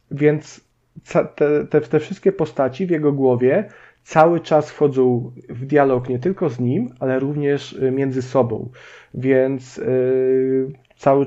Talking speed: 130 wpm